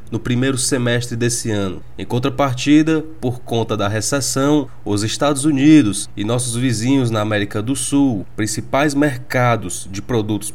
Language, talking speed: Portuguese, 140 wpm